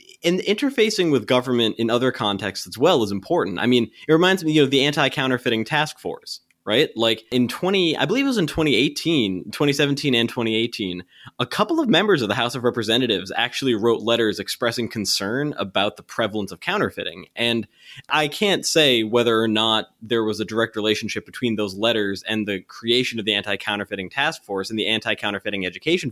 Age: 20-39